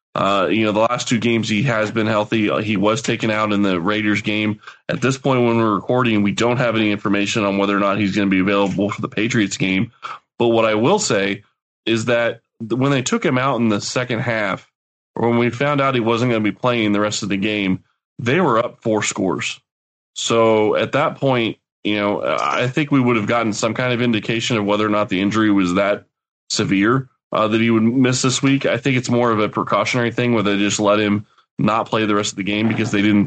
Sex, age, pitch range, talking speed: male, 20-39, 105-120 Hz, 245 wpm